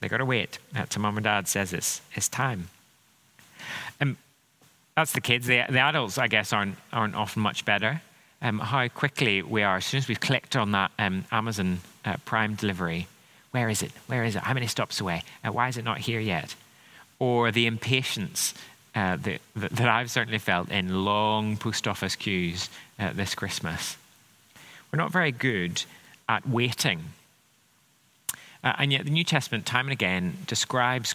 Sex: male